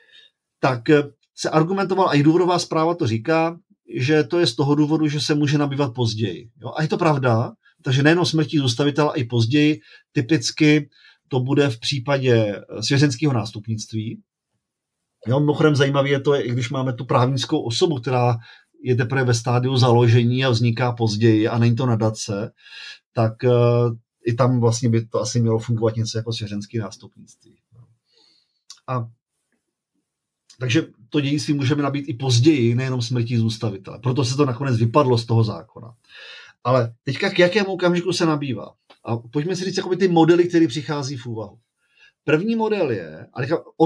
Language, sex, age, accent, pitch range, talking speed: Czech, male, 40-59, native, 120-155 Hz, 165 wpm